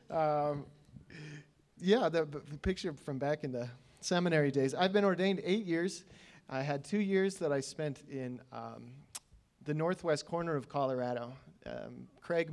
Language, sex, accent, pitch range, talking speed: English, male, American, 125-160 Hz, 155 wpm